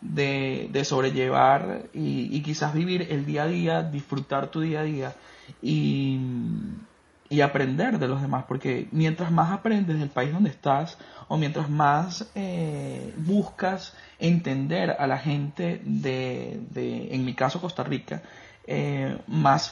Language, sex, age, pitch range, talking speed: Spanish, male, 30-49, 135-180 Hz, 145 wpm